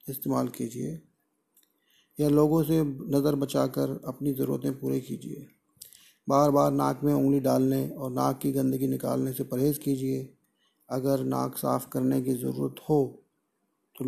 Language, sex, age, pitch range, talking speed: Hindi, male, 40-59, 125-140 Hz, 140 wpm